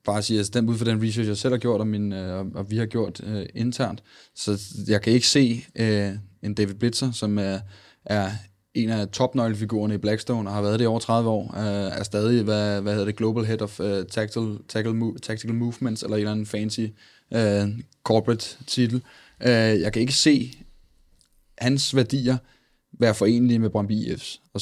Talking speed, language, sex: 200 wpm, Danish, male